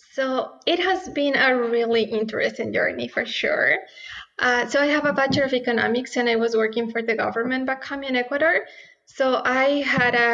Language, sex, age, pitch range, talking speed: English, female, 20-39, 225-260 Hz, 190 wpm